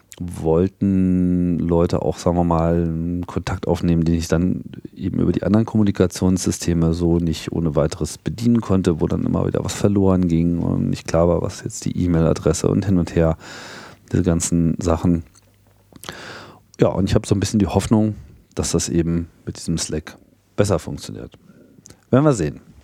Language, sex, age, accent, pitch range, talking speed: German, male, 40-59, German, 80-100 Hz, 170 wpm